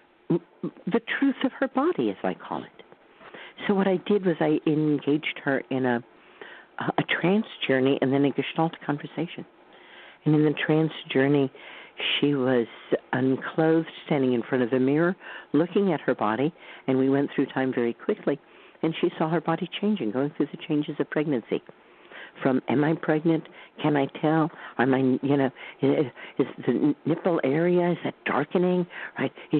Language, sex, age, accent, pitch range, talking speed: English, female, 50-69, American, 130-175 Hz, 170 wpm